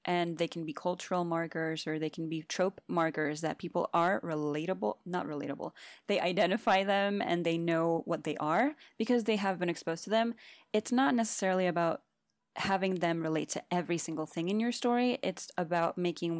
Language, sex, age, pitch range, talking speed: English, female, 20-39, 165-195 Hz, 185 wpm